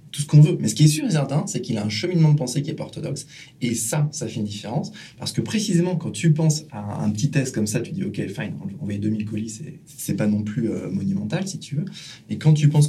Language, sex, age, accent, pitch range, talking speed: French, male, 20-39, French, 120-160 Hz, 295 wpm